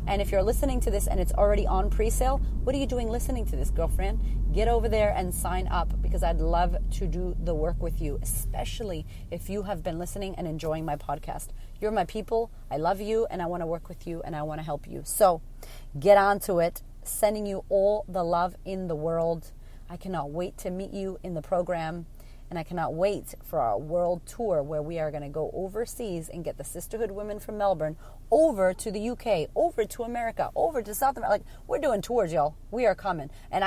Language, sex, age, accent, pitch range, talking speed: English, female, 30-49, American, 160-205 Hz, 225 wpm